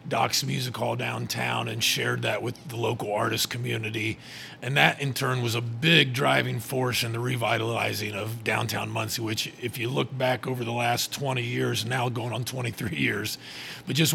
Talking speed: 185 wpm